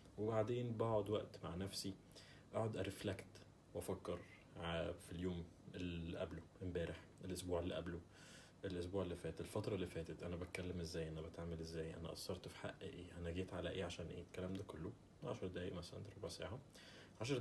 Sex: male